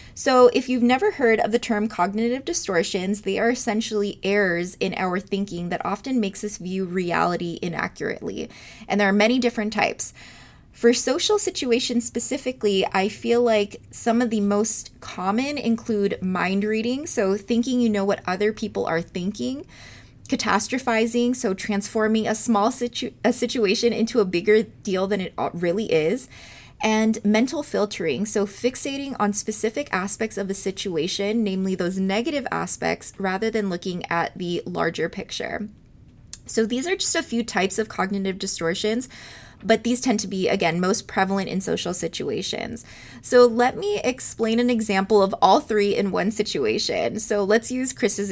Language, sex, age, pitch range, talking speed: English, female, 20-39, 195-235 Hz, 160 wpm